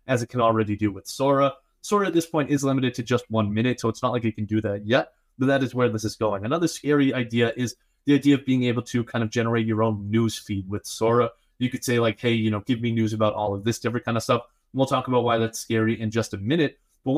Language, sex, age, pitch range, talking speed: English, male, 20-39, 110-140 Hz, 285 wpm